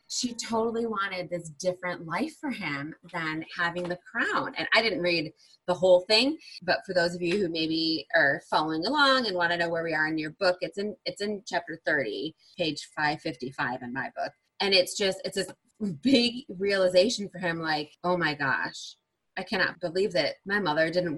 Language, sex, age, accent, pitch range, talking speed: English, female, 20-39, American, 155-195 Hz, 200 wpm